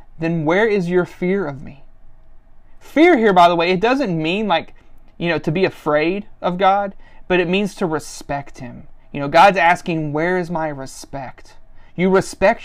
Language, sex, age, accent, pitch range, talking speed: English, male, 30-49, American, 165-210 Hz, 185 wpm